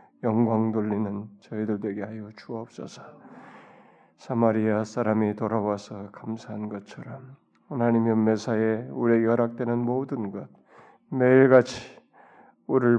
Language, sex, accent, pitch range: Korean, male, native, 110-120 Hz